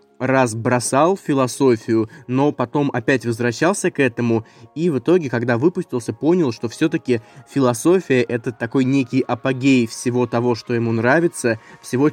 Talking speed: 140 wpm